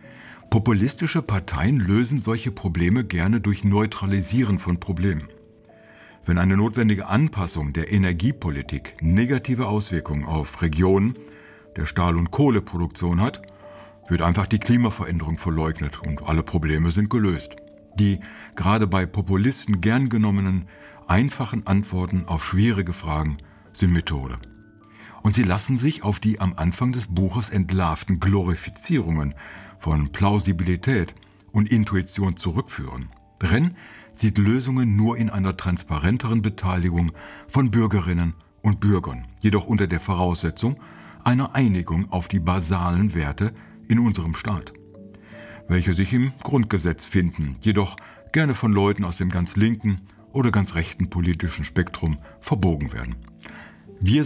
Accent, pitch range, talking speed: German, 85-110 Hz, 125 wpm